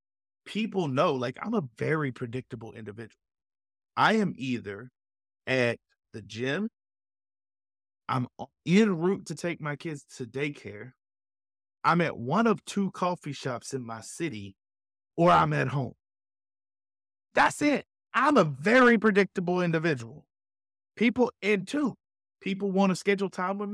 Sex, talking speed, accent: male, 135 wpm, American